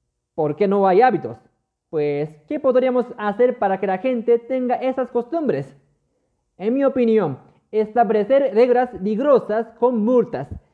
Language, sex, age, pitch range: Japanese, male, 30-49, 205-260 Hz